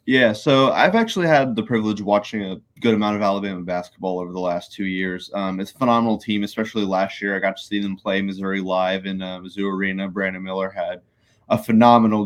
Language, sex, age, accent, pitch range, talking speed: English, male, 20-39, American, 95-115 Hz, 220 wpm